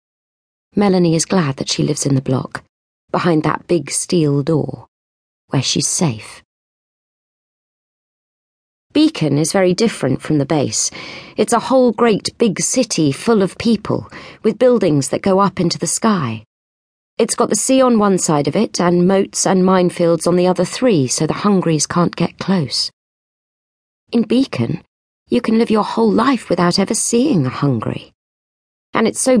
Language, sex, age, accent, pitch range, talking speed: English, female, 40-59, British, 150-220 Hz, 165 wpm